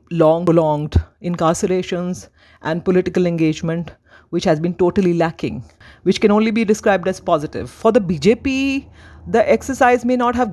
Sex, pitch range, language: female, 165-215 Hz, English